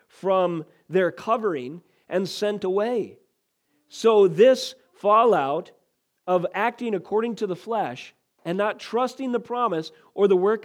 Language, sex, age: English, male, 40-59